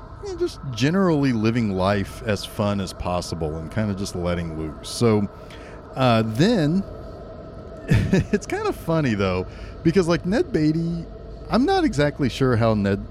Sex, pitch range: male, 95-140 Hz